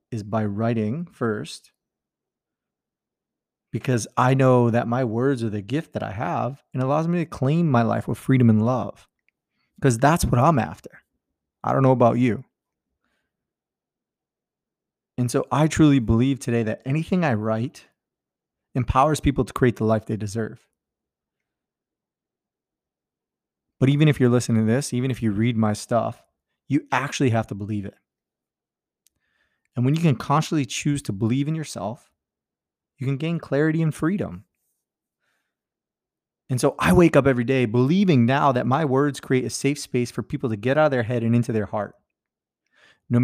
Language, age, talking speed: English, 30-49, 165 wpm